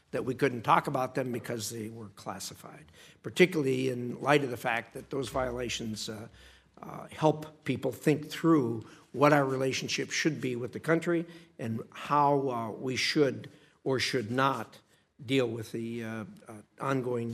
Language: English